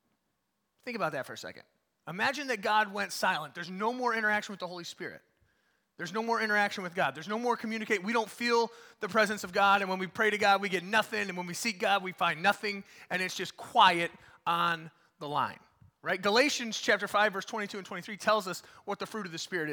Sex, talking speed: male, 230 wpm